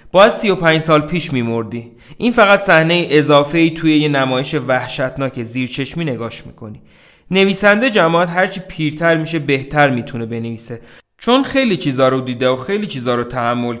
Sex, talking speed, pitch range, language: male, 165 wpm, 120-165 Hz, Persian